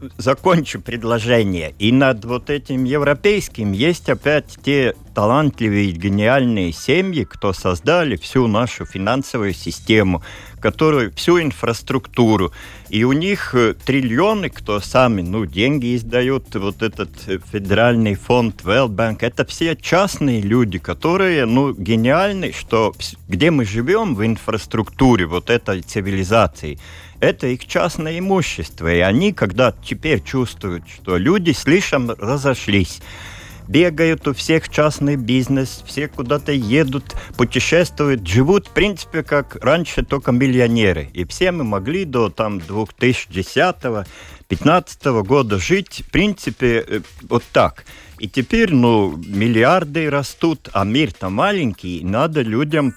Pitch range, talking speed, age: 100-140 Hz, 120 wpm, 50-69